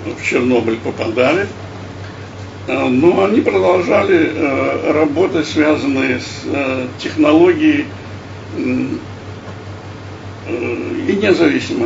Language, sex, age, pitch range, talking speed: Russian, male, 60-79, 100-150 Hz, 60 wpm